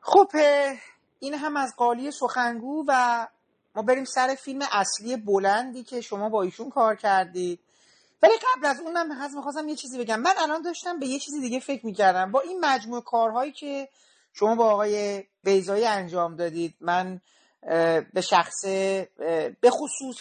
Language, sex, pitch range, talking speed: Persian, male, 195-260 Hz, 155 wpm